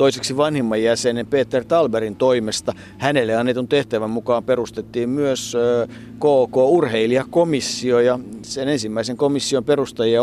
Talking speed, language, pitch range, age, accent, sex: 105 wpm, Finnish, 105-130 Hz, 50-69, native, male